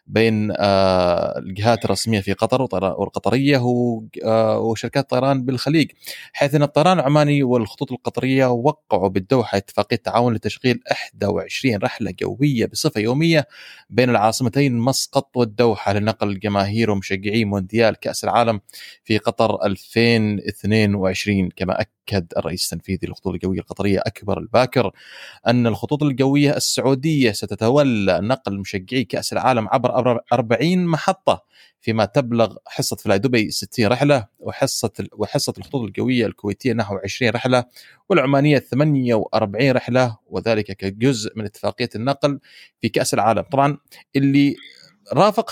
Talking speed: 115 wpm